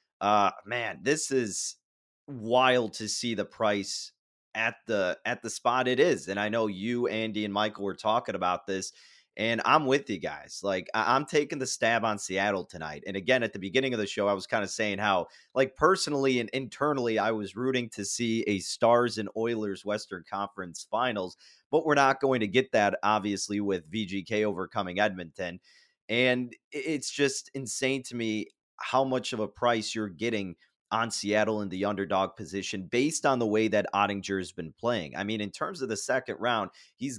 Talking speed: 190 wpm